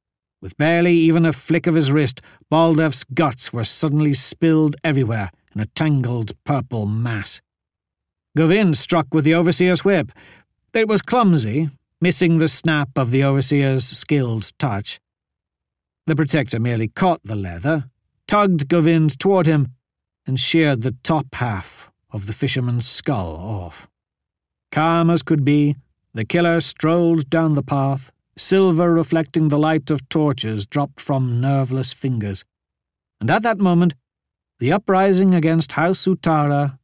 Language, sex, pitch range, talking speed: English, male, 115-165 Hz, 140 wpm